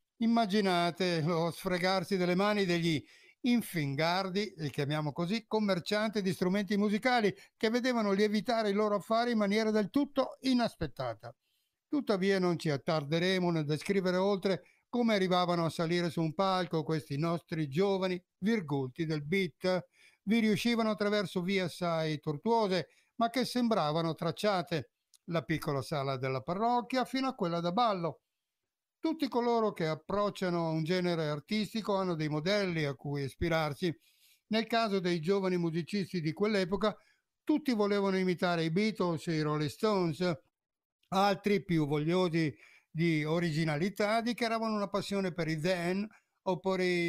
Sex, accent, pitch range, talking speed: male, native, 165-210 Hz, 135 wpm